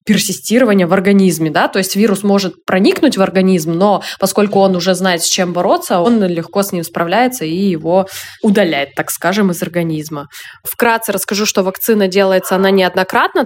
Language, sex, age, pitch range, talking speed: Russian, female, 20-39, 190-230 Hz, 170 wpm